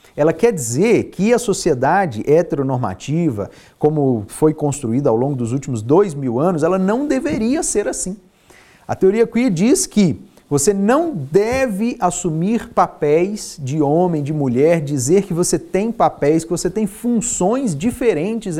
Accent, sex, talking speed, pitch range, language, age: Brazilian, male, 150 wpm, 135-185 Hz, Portuguese, 40-59